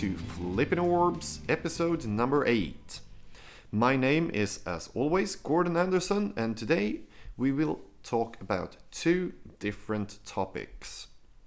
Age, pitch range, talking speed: 30-49, 100-150 Hz, 115 wpm